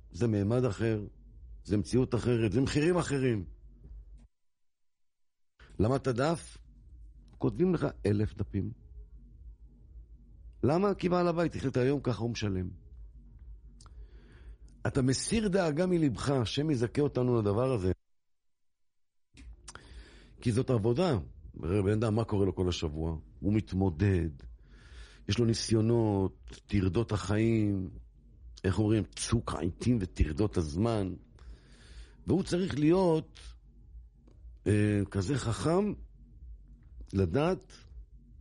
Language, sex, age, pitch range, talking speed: English, male, 50-69, 85-130 Hz, 90 wpm